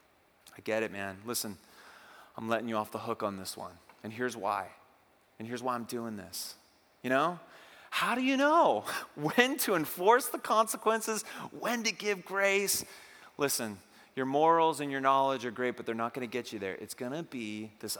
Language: English